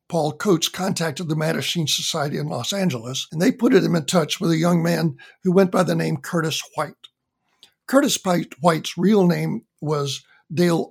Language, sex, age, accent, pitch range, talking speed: English, male, 60-79, American, 155-190 Hz, 175 wpm